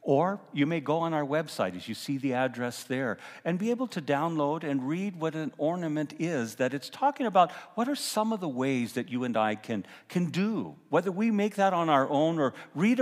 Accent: American